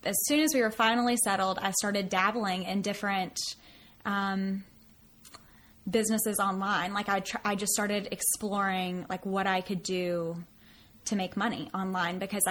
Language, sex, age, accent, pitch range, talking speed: English, female, 10-29, American, 185-215 Hz, 150 wpm